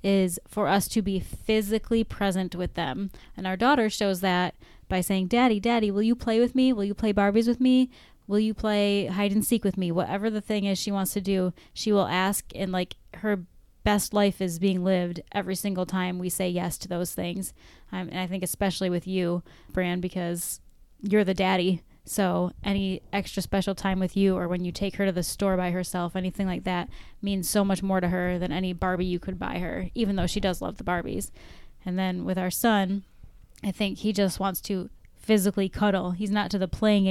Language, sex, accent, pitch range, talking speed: English, female, American, 180-200 Hz, 220 wpm